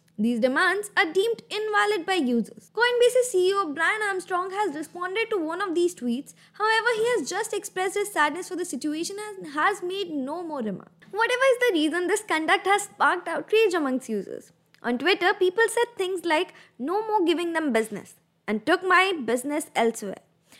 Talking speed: 180 wpm